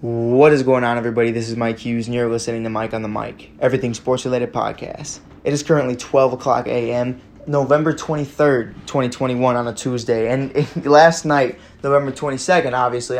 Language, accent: English, American